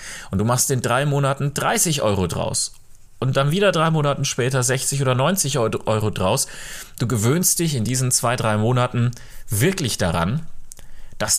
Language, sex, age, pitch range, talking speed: German, male, 30-49, 105-145 Hz, 170 wpm